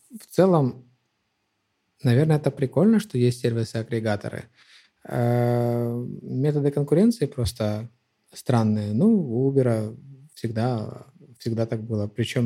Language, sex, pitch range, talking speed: Ukrainian, male, 115-140 Hz, 100 wpm